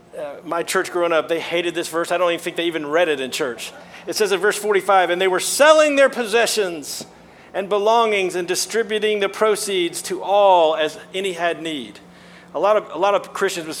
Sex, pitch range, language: male, 170-205 Hz, English